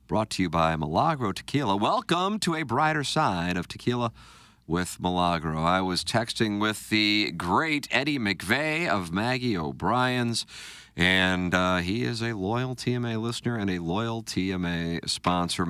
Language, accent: English, American